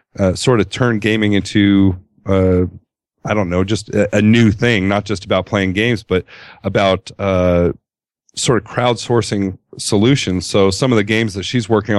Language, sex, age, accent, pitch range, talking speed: English, male, 40-59, American, 95-110 Hz, 175 wpm